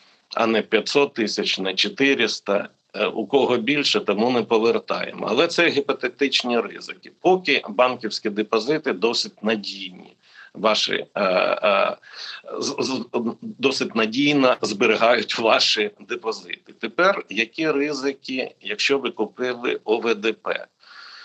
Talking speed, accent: 95 wpm, native